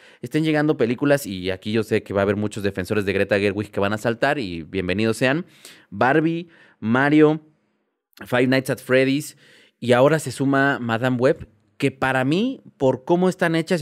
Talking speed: 180 wpm